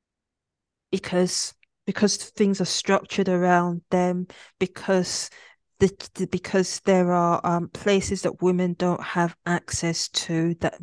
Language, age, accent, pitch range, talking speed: English, 20-39, British, 180-215 Hz, 120 wpm